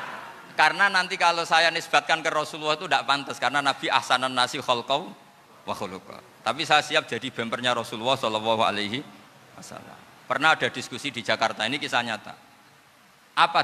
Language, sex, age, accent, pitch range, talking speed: Indonesian, male, 50-69, native, 115-165 Hz, 150 wpm